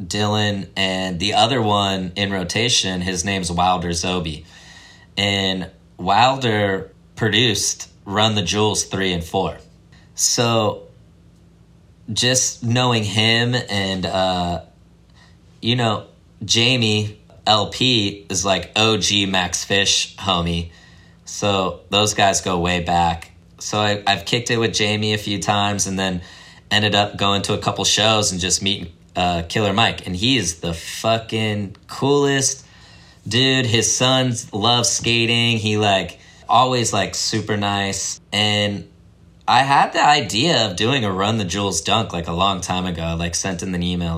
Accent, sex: American, male